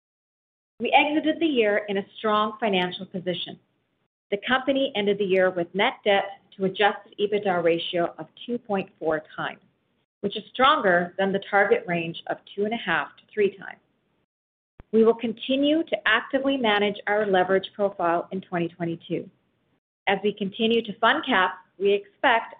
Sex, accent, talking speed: female, American, 155 wpm